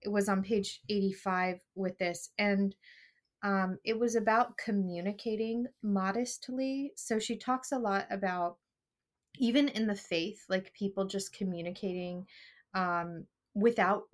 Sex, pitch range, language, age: female, 180-220 Hz, English, 20-39